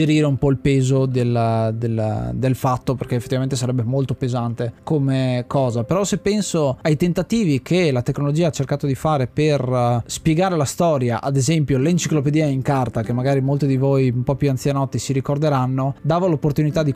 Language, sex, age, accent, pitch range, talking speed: Italian, male, 20-39, native, 130-155 Hz, 175 wpm